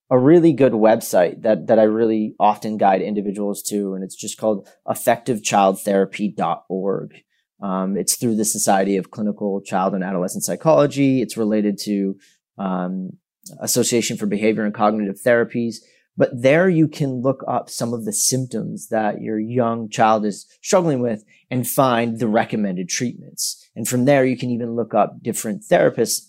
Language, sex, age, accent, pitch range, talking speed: English, male, 30-49, American, 105-135 Hz, 160 wpm